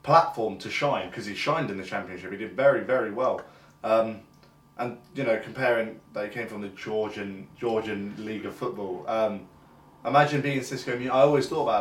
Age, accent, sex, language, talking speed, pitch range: 20-39, British, male, English, 190 wpm, 105-130 Hz